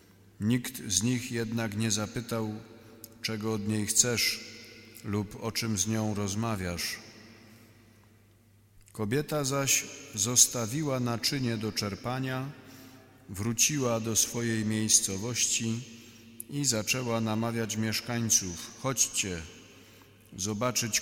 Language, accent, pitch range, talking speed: Polish, native, 105-120 Hz, 90 wpm